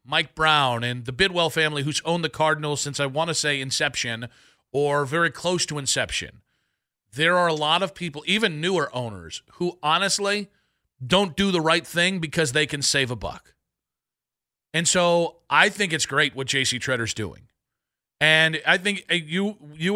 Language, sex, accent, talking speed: English, male, American, 175 wpm